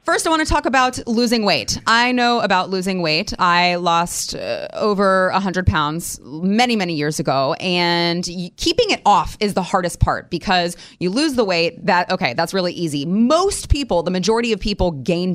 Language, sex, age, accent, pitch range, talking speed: English, female, 20-39, American, 160-215 Hz, 190 wpm